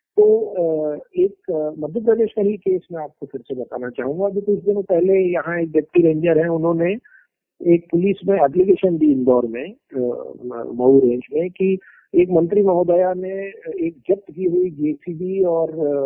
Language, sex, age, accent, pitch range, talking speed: Hindi, male, 50-69, native, 140-200 Hz, 170 wpm